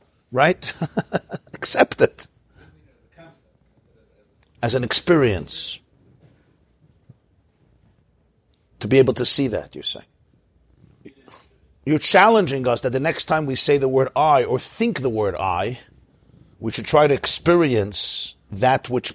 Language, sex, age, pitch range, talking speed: English, male, 50-69, 110-160 Hz, 120 wpm